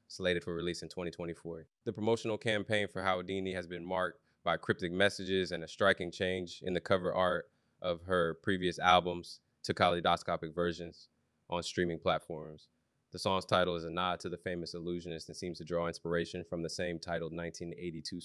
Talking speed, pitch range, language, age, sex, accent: 180 wpm, 85-90 Hz, English, 20-39, male, American